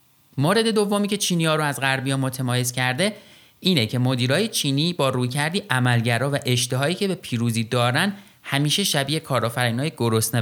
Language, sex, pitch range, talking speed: Persian, male, 115-150 Hz, 165 wpm